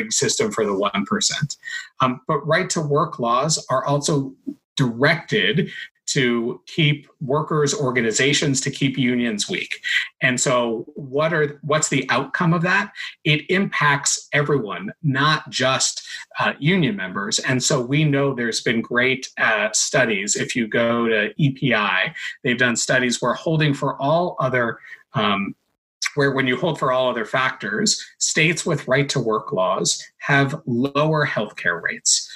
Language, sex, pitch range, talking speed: English, male, 125-155 Hz, 145 wpm